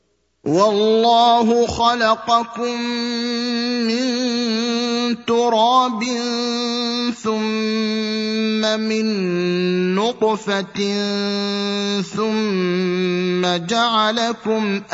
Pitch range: 200-240 Hz